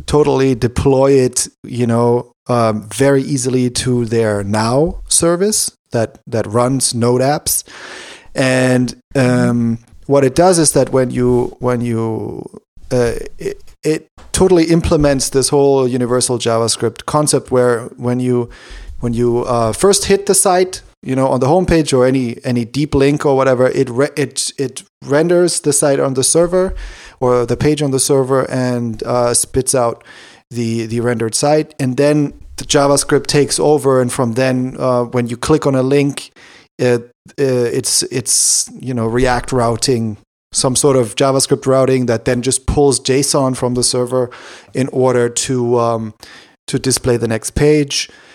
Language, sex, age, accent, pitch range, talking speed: English, male, 30-49, German, 120-140 Hz, 160 wpm